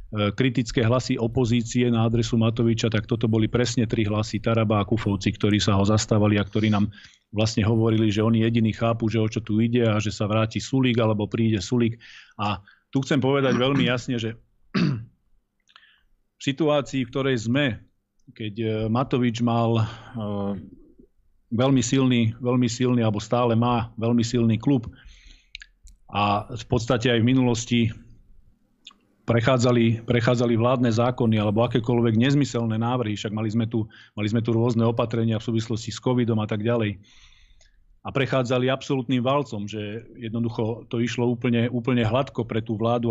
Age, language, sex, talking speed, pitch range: 40-59, Slovak, male, 150 wpm, 110-125 Hz